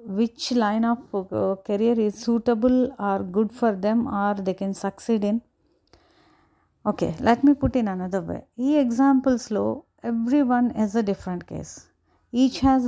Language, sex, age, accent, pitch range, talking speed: Telugu, female, 30-49, native, 195-245 Hz, 160 wpm